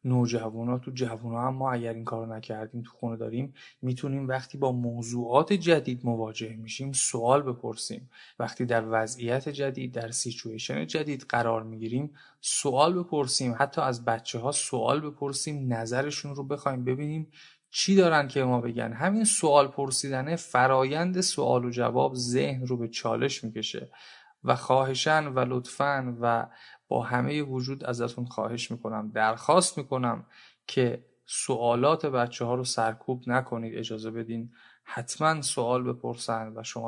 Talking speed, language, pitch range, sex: 140 wpm, Persian, 115-140 Hz, male